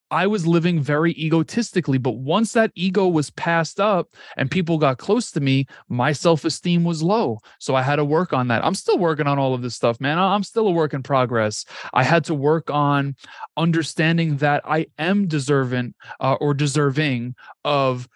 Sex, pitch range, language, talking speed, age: male, 135-170 Hz, English, 190 wpm, 30-49